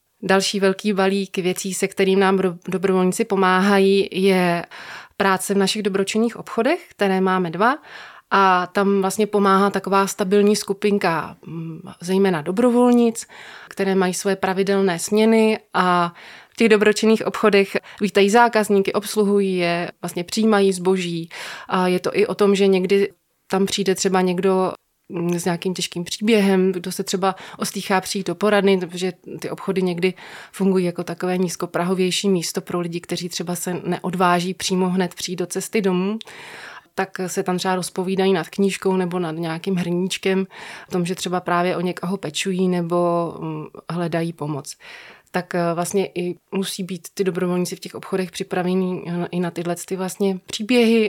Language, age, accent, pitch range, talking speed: Czech, 20-39, native, 180-200 Hz, 150 wpm